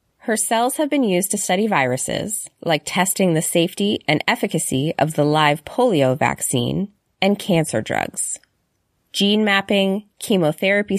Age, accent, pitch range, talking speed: 20-39, American, 150-200 Hz, 135 wpm